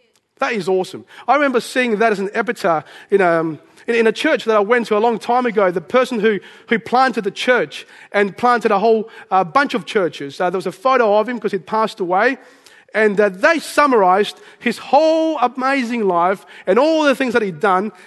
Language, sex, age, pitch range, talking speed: English, male, 30-49, 165-235 Hz, 210 wpm